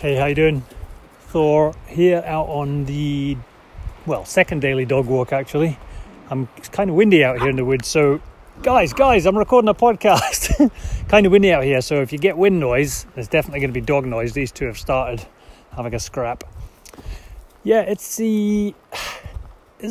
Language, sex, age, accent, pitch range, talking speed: English, male, 30-49, British, 130-195 Hz, 185 wpm